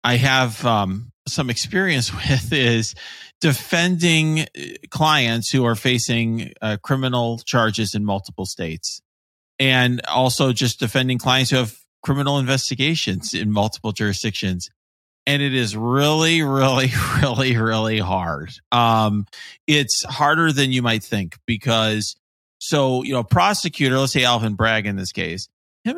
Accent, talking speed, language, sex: American, 135 wpm, English, male